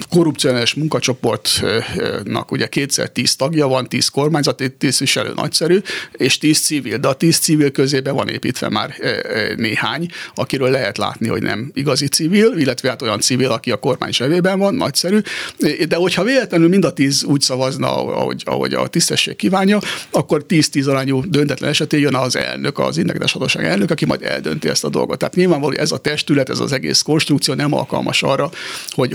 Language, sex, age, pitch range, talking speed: Hungarian, male, 60-79, 135-170 Hz, 170 wpm